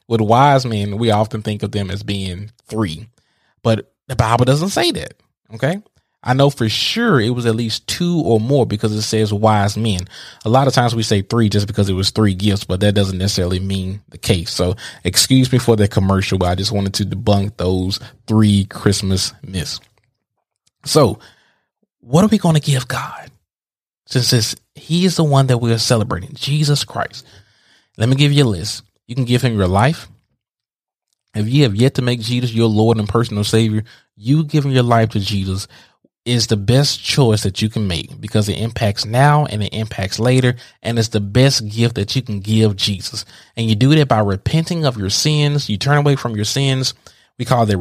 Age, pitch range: 20-39, 105-130 Hz